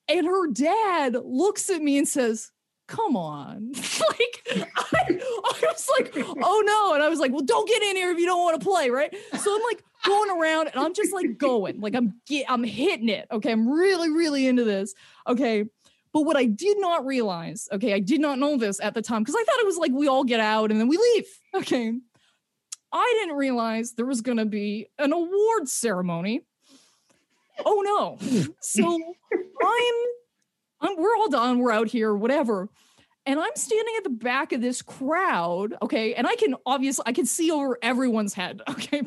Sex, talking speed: female, 195 wpm